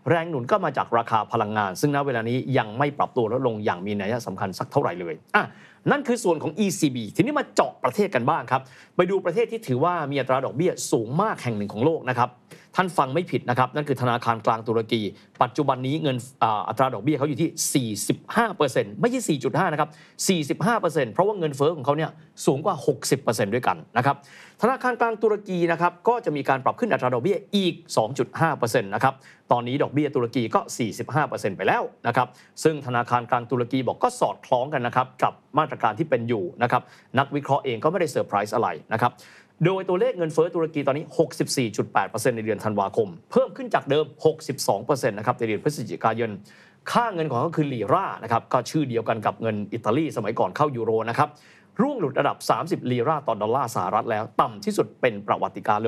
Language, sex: Thai, male